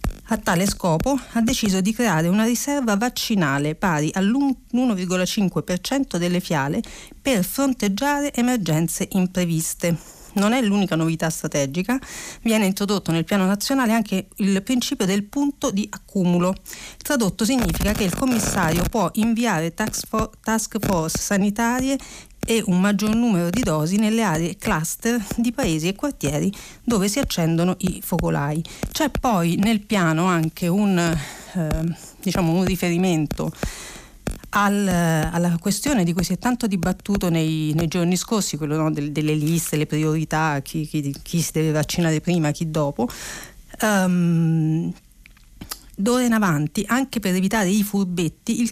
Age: 40-59